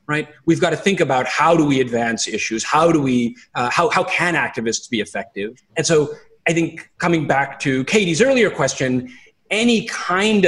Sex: male